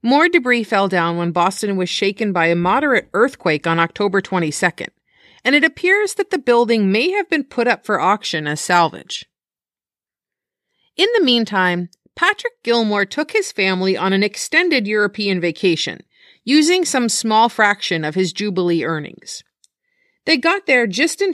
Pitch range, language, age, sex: 180-295 Hz, English, 40-59, female